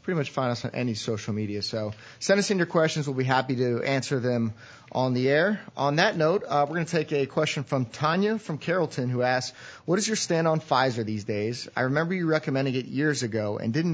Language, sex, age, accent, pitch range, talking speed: English, male, 30-49, American, 120-140 Hz, 240 wpm